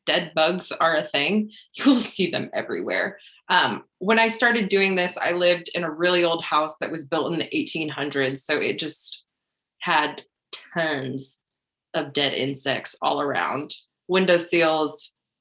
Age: 20-39